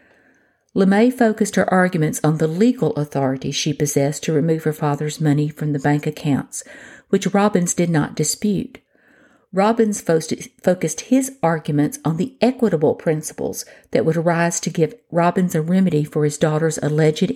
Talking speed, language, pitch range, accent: 150 wpm, English, 155-200 Hz, American